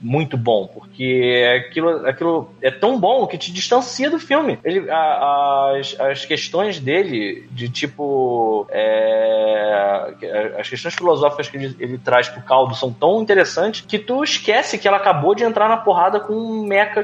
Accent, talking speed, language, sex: Brazilian, 170 wpm, Portuguese, male